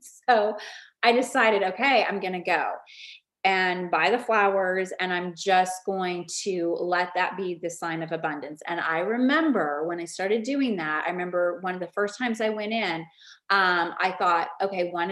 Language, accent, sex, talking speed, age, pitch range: English, American, female, 185 wpm, 30-49, 175-220 Hz